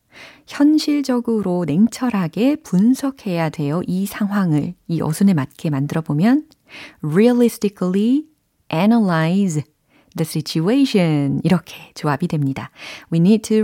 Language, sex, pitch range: Korean, female, 160-255 Hz